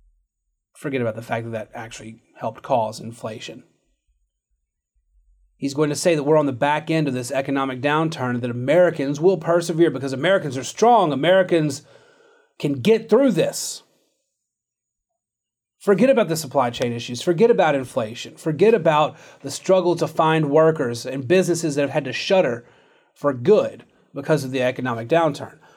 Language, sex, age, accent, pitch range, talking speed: English, male, 30-49, American, 130-185 Hz, 155 wpm